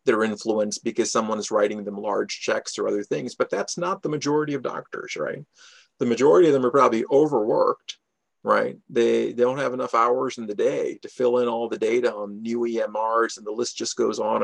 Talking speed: 215 wpm